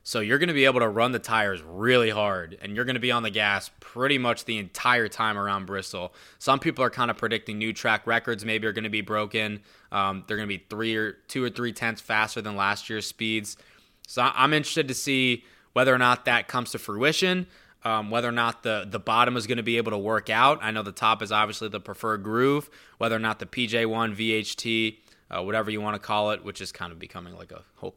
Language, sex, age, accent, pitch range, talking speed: English, male, 20-39, American, 105-125 Hz, 245 wpm